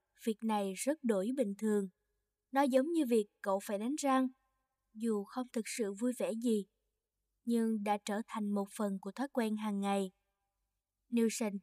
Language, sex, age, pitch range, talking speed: Vietnamese, female, 20-39, 205-250 Hz, 170 wpm